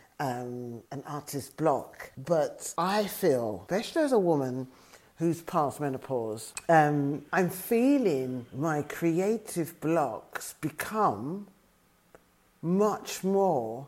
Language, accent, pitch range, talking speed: English, British, 135-165 Hz, 100 wpm